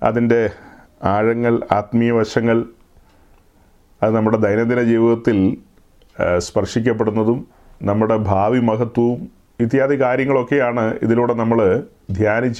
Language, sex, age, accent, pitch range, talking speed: Malayalam, male, 30-49, native, 105-130 Hz, 75 wpm